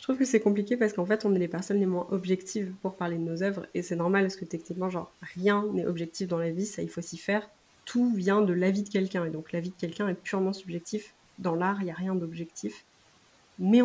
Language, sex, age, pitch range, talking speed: French, female, 20-39, 180-205 Hz, 260 wpm